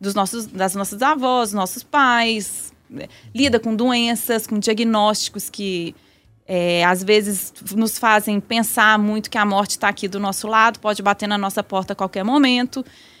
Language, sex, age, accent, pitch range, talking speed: Portuguese, female, 20-39, Brazilian, 205-265 Hz, 170 wpm